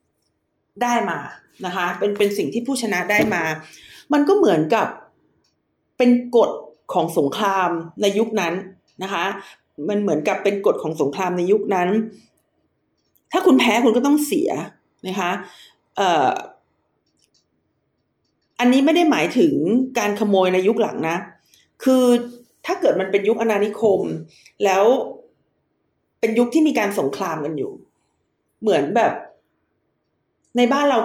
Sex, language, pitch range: female, Thai, 195-250 Hz